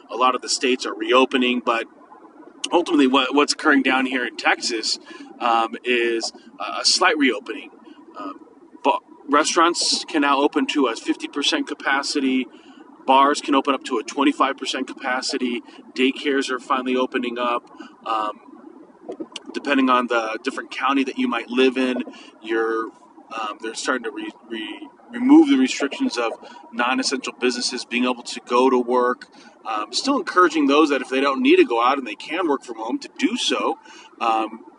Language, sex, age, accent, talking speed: English, male, 30-49, American, 165 wpm